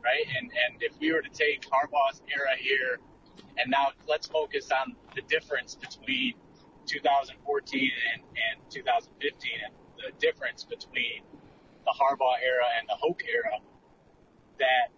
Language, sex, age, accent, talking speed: English, male, 30-49, American, 140 wpm